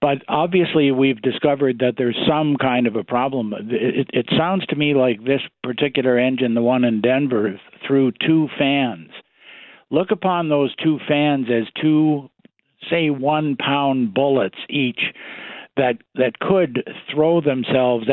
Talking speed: 145 wpm